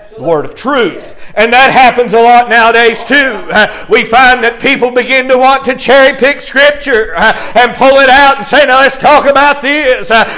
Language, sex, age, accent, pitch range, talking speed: English, male, 50-69, American, 235-290 Hz, 185 wpm